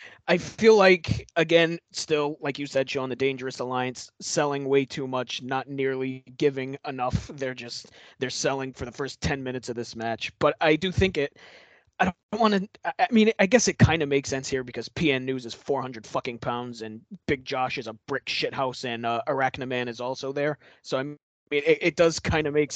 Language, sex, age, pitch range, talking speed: English, male, 20-39, 125-155 Hz, 210 wpm